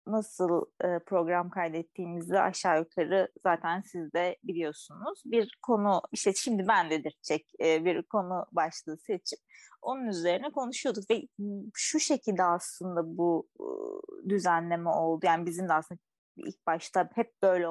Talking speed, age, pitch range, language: 125 wpm, 30-49, 170-220 Hz, Turkish